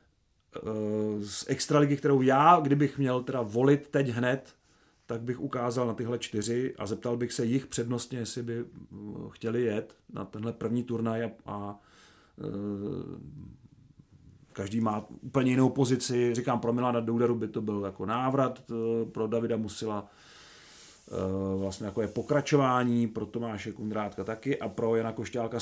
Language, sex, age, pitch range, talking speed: Czech, male, 30-49, 110-130 Hz, 140 wpm